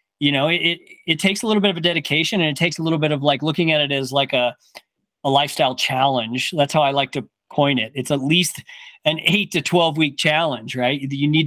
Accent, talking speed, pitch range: American, 250 wpm, 140-175 Hz